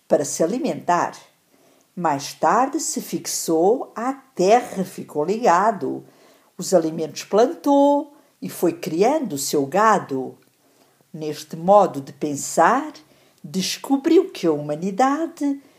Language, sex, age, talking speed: English, female, 60-79, 105 wpm